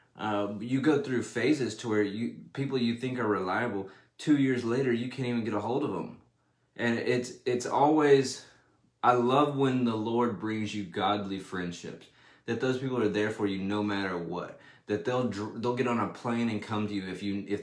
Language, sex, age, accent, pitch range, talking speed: English, male, 20-39, American, 100-125 Hz, 210 wpm